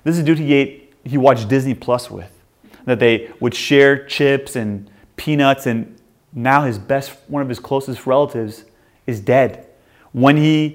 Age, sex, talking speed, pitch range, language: 30-49, male, 175 wpm, 115-160 Hz, English